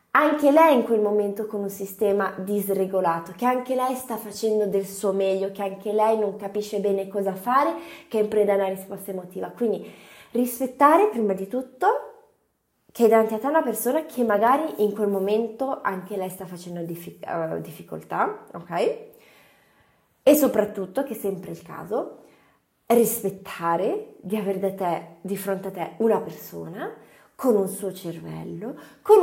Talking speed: 160 wpm